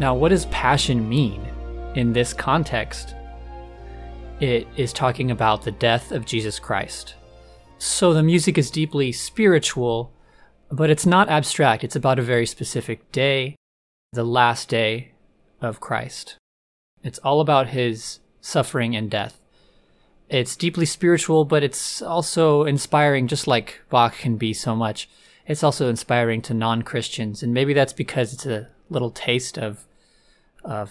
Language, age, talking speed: English, 20-39, 145 wpm